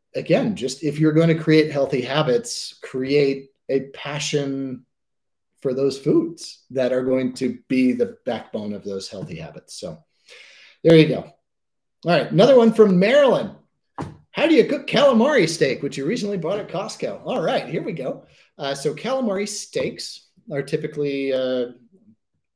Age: 30-49